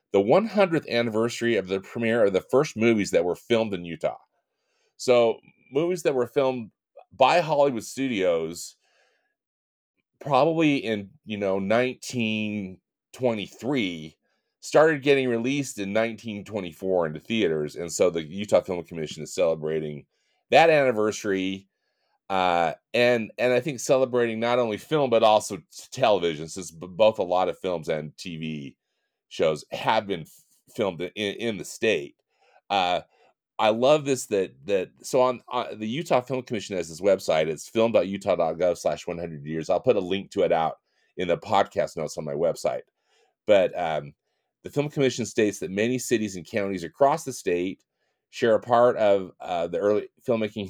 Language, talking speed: English, 155 wpm